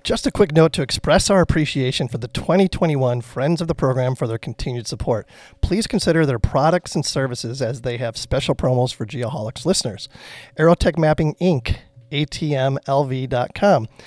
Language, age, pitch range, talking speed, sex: English, 40-59, 125-165 Hz, 160 wpm, male